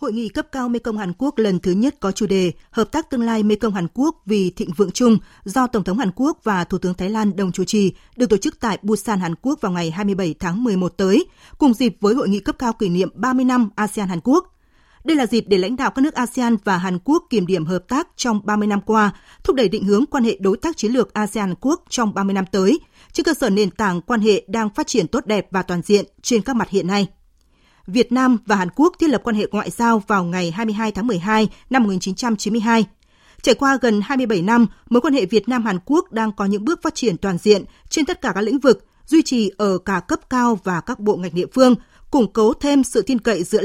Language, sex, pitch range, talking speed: Vietnamese, female, 200-255 Hz, 245 wpm